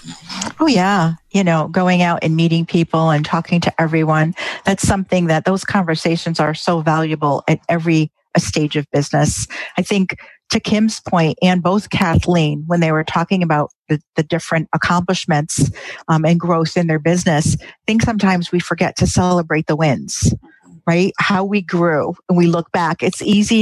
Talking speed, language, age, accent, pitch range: 175 wpm, English, 50-69, American, 170-215 Hz